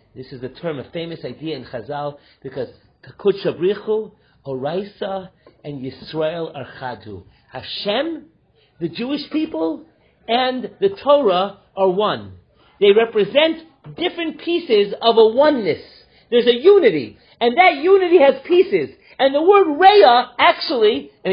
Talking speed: 130 wpm